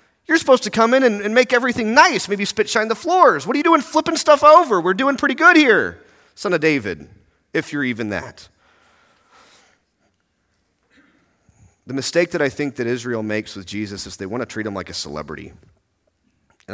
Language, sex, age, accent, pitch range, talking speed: English, male, 30-49, American, 105-165 Hz, 190 wpm